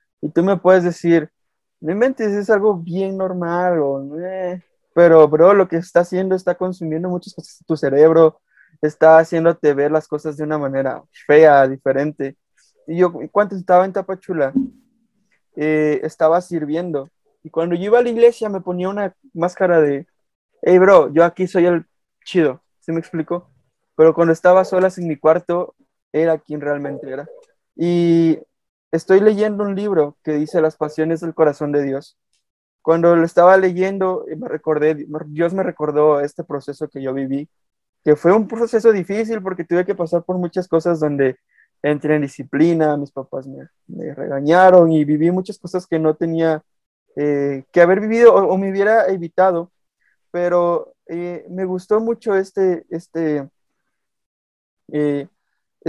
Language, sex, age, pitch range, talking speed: Spanish, male, 20-39, 155-185 Hz, 160 wpm